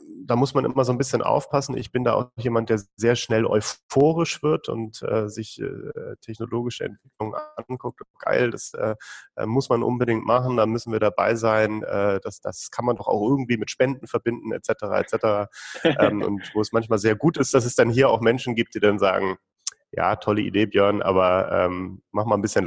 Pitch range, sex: 105-135 Hz, male